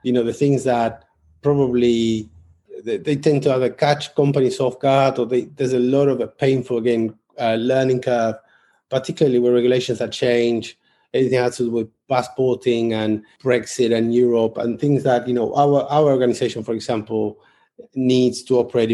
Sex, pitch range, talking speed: male, 115-135 Hz, 175 wpm